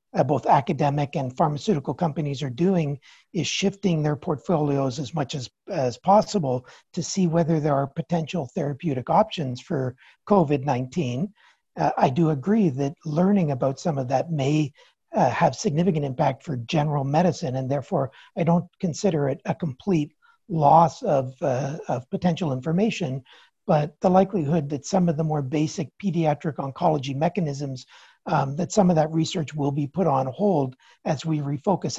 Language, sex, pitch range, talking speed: English, male, 145-180 Hz, 160 wpm